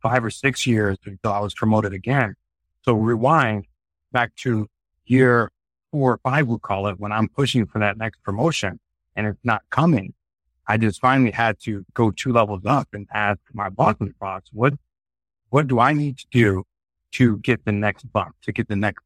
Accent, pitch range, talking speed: American, 95-115 Hz, 195 wpm